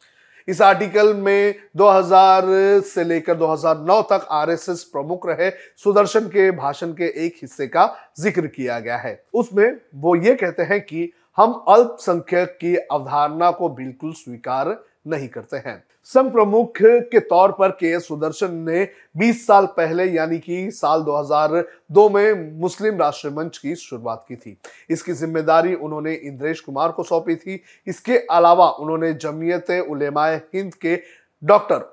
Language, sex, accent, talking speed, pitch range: Hindi, male, native, 90 wpm, 155-190 Hz